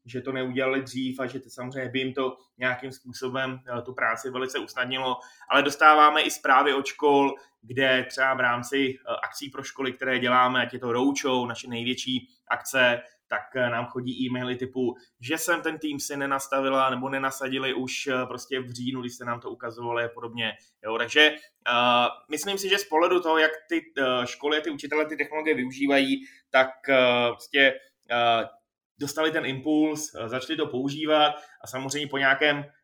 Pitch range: 125-140 Hz